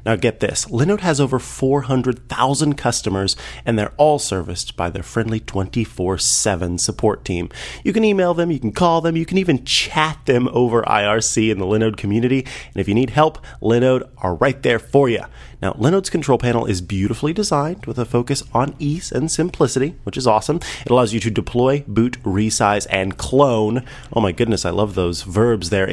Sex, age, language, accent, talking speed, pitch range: male, 30-49, English, American, 190 wpm, 110-140 Hz